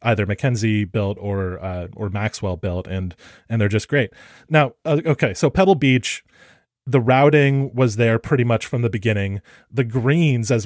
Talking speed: 175 wpm